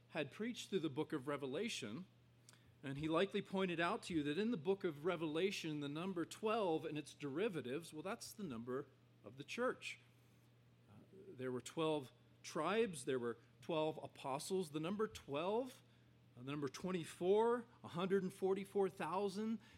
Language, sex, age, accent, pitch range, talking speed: English, male, 40-59, American, 130-195 Hz, 150 wpm